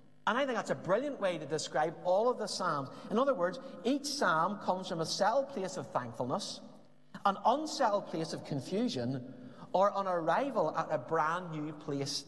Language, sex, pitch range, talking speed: English, male, 145-210 Hz, 185 wpm